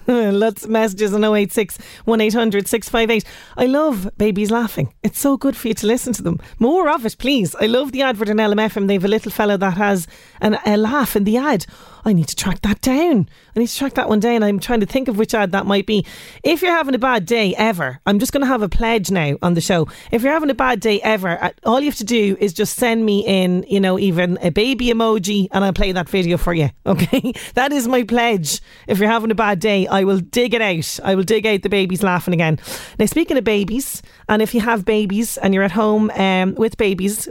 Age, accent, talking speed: 30-49, Irish, 250 wpm